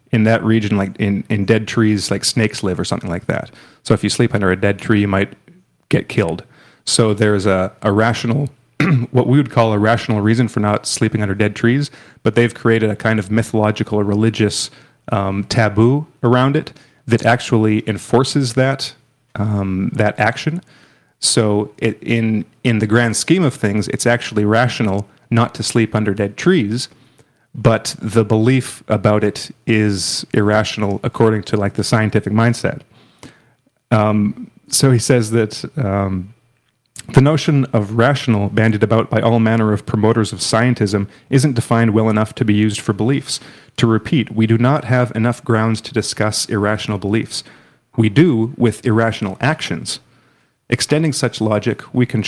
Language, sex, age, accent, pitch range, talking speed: English, male, 30-49, American, 105-125 Hz, 170 wpm